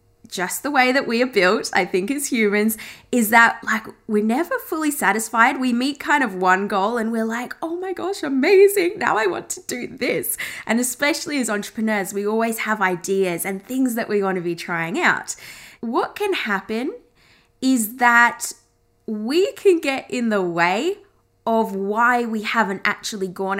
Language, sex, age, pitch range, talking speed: English, female, 20-39, 195-270 Hz, 180 wpm